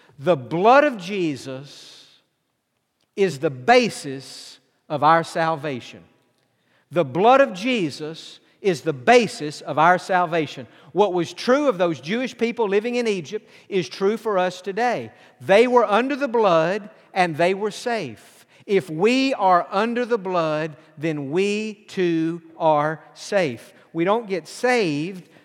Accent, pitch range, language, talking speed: American, 160-210 Hz, English, 140 wpm